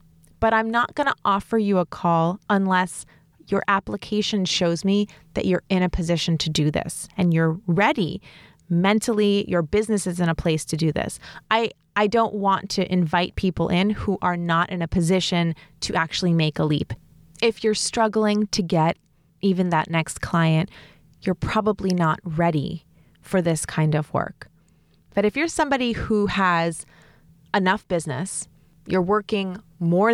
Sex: female